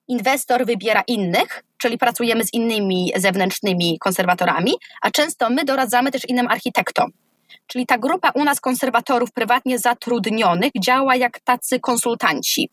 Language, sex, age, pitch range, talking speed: Polish, female, 20-39, 205-270 Hz, 130 wpm